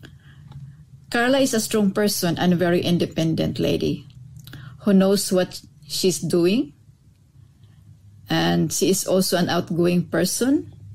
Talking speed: 120 wpm